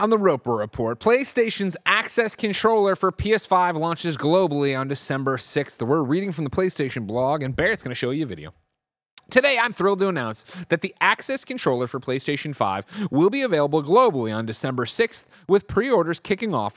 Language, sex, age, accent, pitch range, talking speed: English, male, 30-49, American, 120-185 Hz, 180 wpm